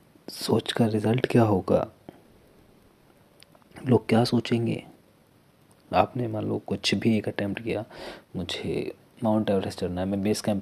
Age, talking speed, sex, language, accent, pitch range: 30-49, 135 wpm, male, Hindi, native, 100-115 Hz